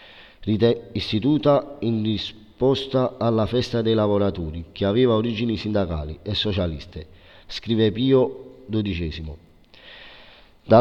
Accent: native